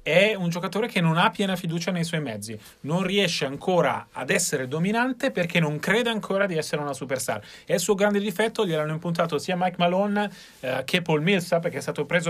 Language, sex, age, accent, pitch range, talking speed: Italian, male, 30-49, native, 150-205 Hz, 210 wpm